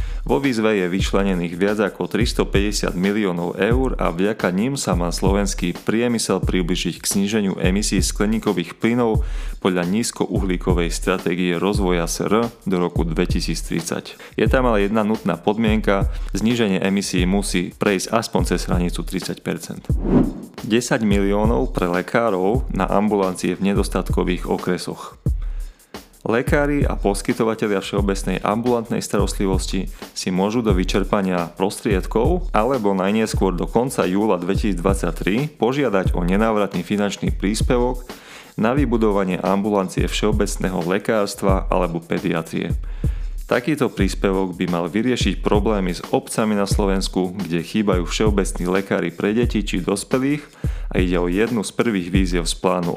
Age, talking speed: 30-49, 125 wpm